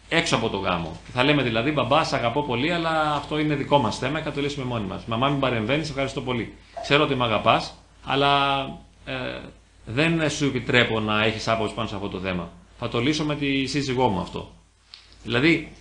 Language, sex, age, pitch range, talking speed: Greek, male, 30-49, 105-160 Hz, 205 wpm